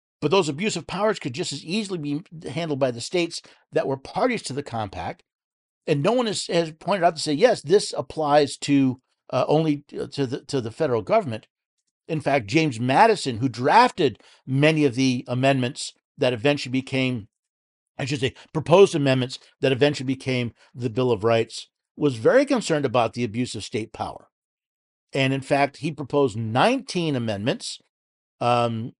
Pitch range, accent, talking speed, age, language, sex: 125-160 Hz, American, 170 wpm, 50-69, English, male